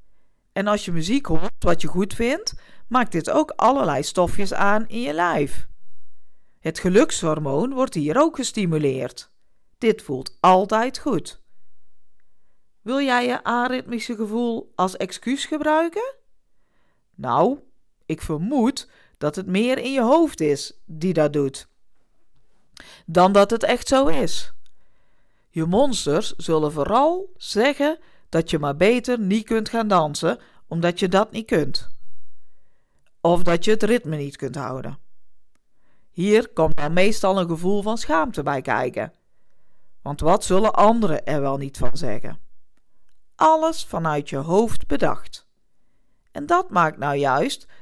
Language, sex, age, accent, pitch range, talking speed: Dutch, female, 50-69, Dutch, 160-245 Hz, 140 wpm